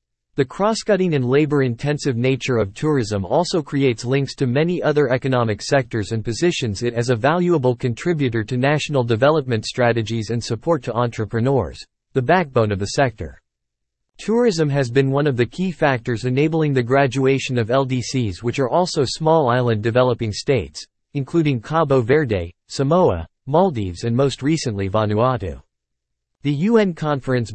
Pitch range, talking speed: 115-150 Hz, 145 wpm